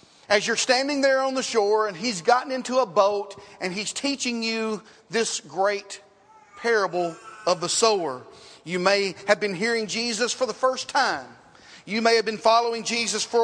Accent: American